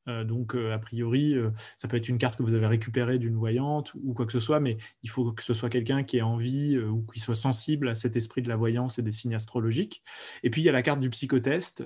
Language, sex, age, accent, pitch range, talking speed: French, male, 20-39, French, 115-130 Hz, 280 wpm